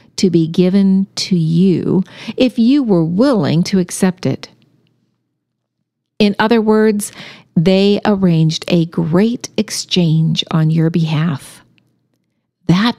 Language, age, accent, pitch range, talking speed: English, 50-69, American, 170-230 Hz, 110 wpm